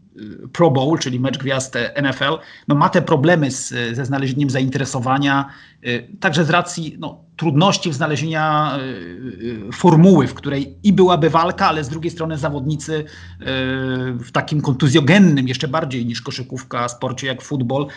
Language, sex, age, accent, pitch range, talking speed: Polish, male, 40-59, native, 130-160 Hz, 155 wpm